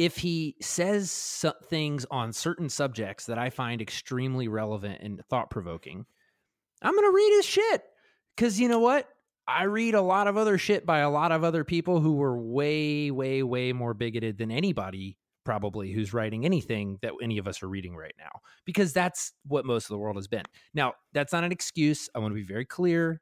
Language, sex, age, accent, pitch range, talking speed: English, male, 30-49, American, 110-165 Hz, 200 wpm